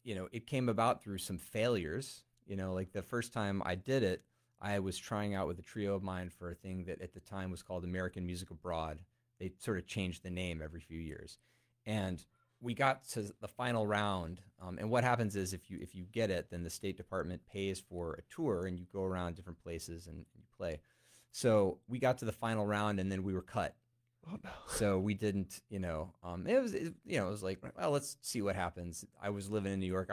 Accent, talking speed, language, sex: American, 235 wpm, English, male